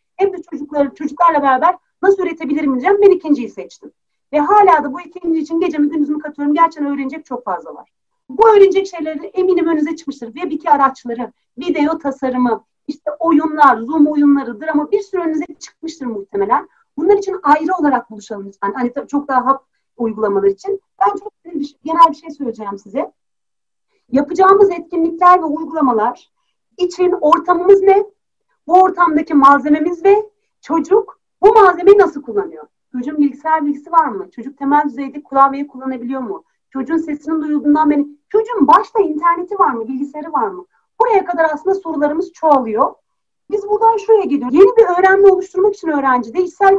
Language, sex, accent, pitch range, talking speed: Turkish, female, native, 285-385 Hz, 155 wpm